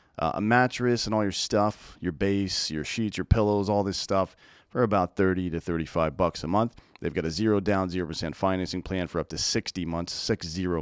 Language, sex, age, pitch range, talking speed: English, male, 40-59, 85-105 Hz, 215 wpm